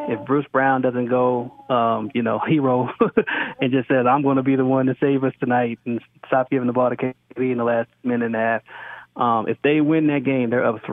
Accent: American